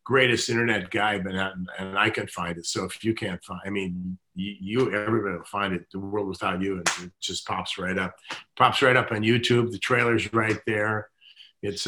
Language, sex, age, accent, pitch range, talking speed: English, male, 50-69, American, 95-115 Hz, 200 wpm